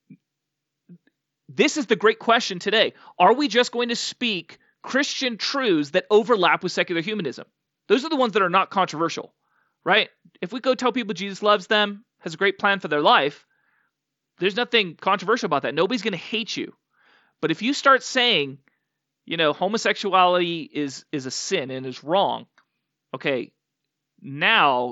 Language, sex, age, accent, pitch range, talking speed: English, male, 30-49, American, 150-225 Hz, 170 wpm